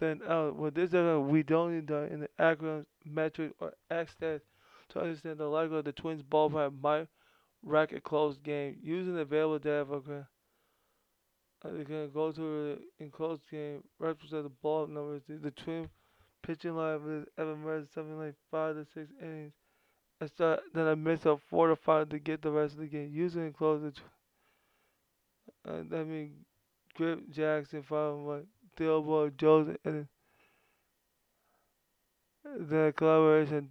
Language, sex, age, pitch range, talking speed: English, male, 20-39, 150-160 Hz, 160 wpm